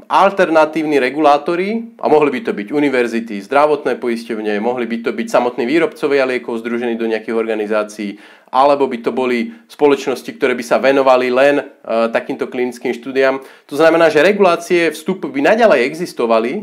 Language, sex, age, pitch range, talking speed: Slovak, male, 30-49, 120-160 Hz, 155 wpm